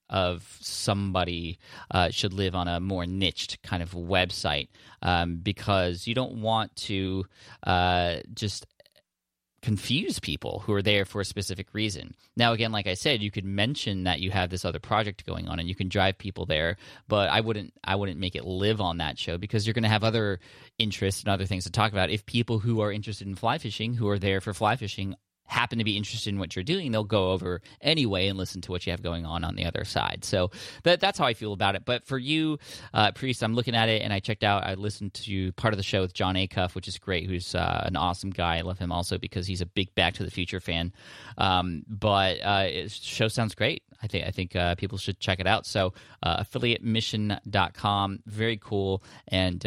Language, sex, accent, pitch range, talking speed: English, male, American, 90-110 Hz, 225 wpm